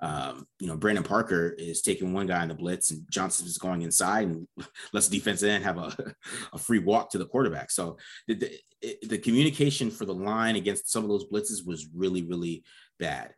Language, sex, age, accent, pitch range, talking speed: English, male, 30-49, American, 85-105 Hz, 215 wpm